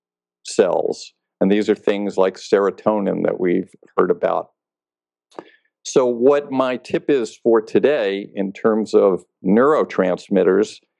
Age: 50-69